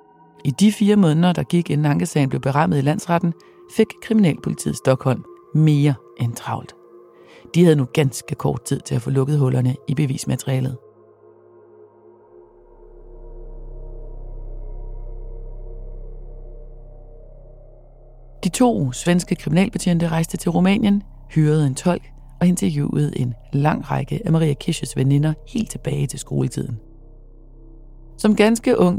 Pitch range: 120-165 Hz